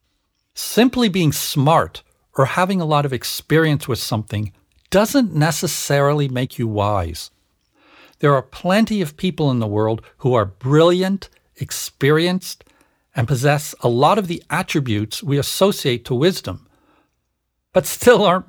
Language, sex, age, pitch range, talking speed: English, male, 60-79, 125-180 Hz, 135 wpm